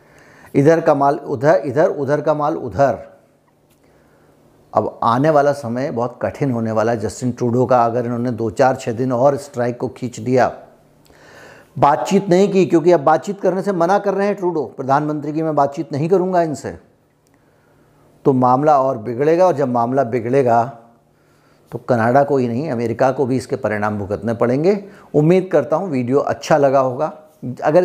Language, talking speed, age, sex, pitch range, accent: Hindi, 170 wpm, 50-69, male, 125-155 Hz, native